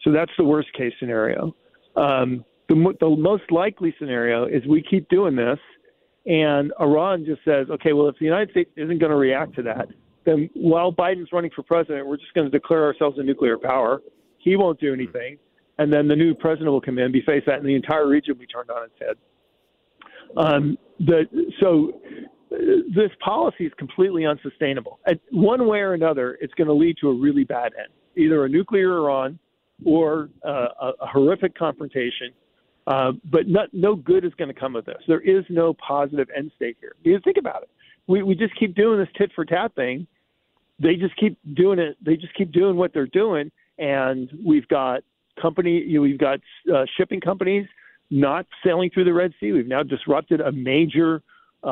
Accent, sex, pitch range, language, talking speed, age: American, male, 140-185 Hz, English, 195 wpm, 50-69